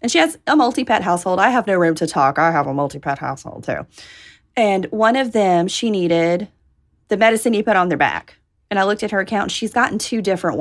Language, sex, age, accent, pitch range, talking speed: English, female, 30-49, American, 190-270 Hz, 230 wpm